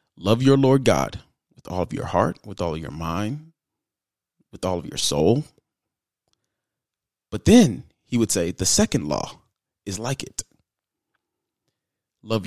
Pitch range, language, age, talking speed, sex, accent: 95-135 Hz, English, 30-49, 150 wpm, male, American